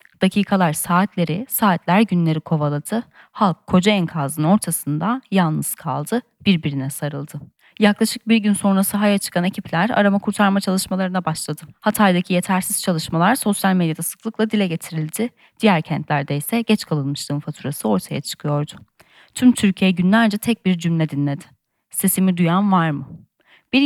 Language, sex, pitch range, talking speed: Turkish, female, 155-205 Hz, 130 wpm